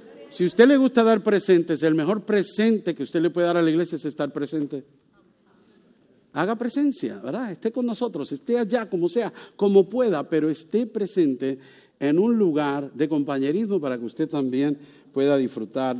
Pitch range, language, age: 140-195 Hz, English, 50-69